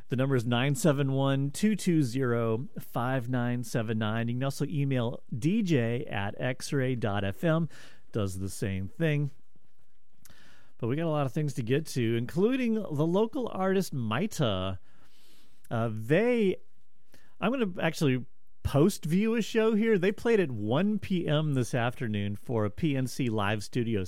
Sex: male